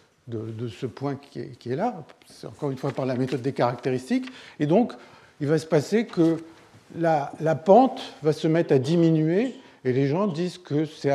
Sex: male